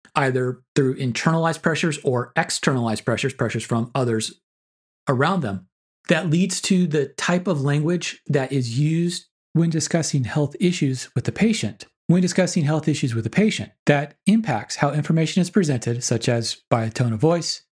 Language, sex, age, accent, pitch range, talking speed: English, male, 30-49, American, 130-165 Hz, 165 wpm